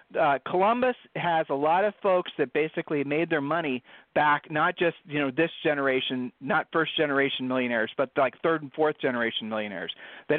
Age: 40-59